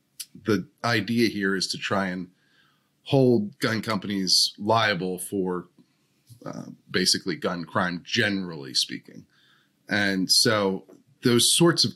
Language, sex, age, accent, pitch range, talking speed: English, male, 30-49, American, 95-115 Hz, 115 wpm